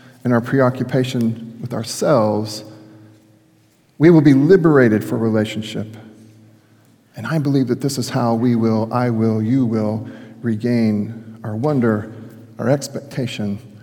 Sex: male